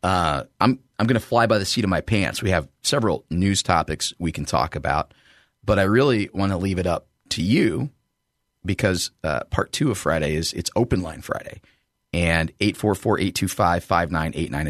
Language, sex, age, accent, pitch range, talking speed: English, male, 30-49, American, 80-105 Hz, 180 wpm